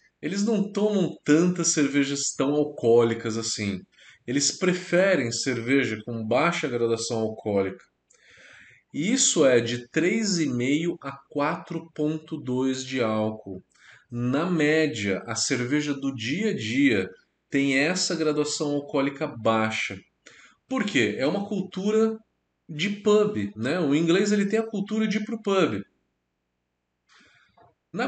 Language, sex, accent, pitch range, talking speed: Portuguese, male, Brazilian, 125-200 Hz, 120 wpm